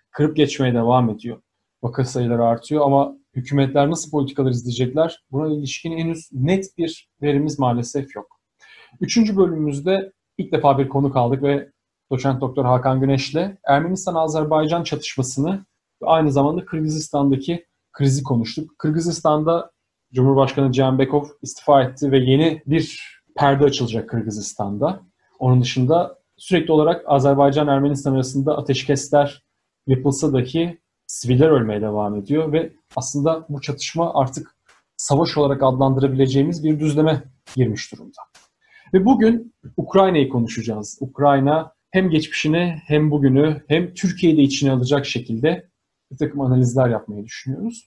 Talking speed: 120 wpm